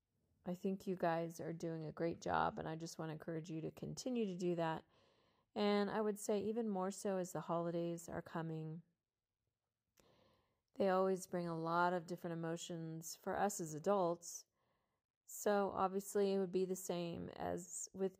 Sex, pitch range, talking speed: female, 165-200 Hz, 180 wpm